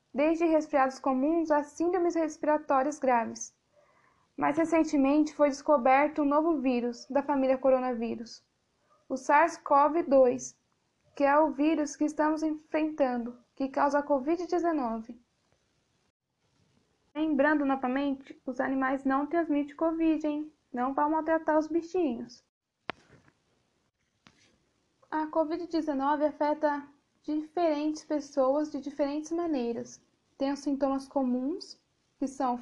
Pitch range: 265-310 Hz